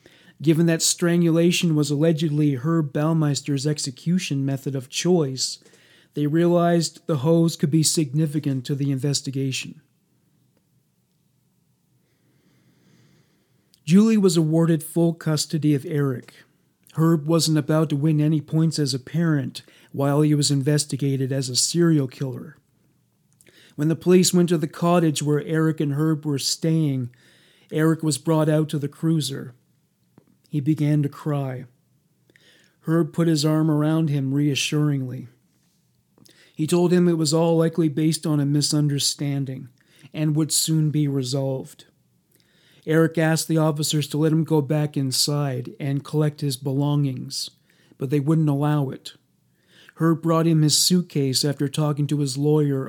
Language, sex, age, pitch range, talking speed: English, male, 40-59, 140-165 Hz, 140 wpm